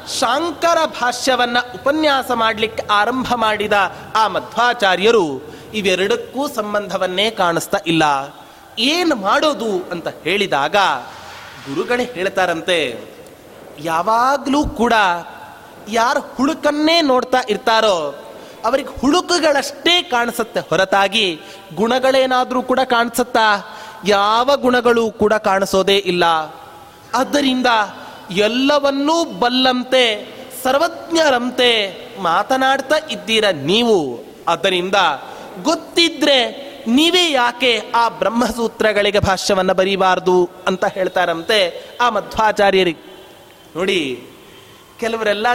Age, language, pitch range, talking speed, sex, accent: 30-49, Kannada, 200-275 Hz, 75 wpm, male, native